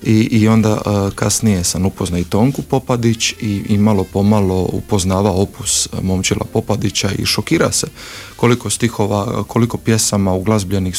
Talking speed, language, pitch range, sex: 135 wpm, Croatian, 100-115 Hz, male